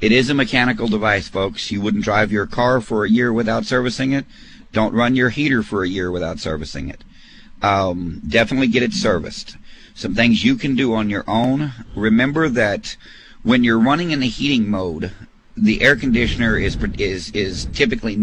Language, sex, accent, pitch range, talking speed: English, male, American, 100-125 Hz, 185 wpm